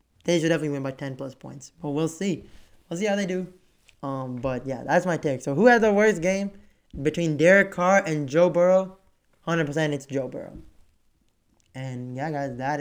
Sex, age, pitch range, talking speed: male, 20-39, 135-175 Hz, 200 wpm